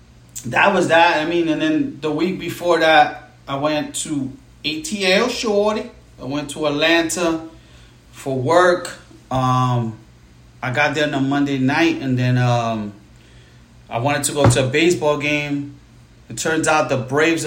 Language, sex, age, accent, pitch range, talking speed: English, male, 30-49, American, 130-175 Hz, 160 wpm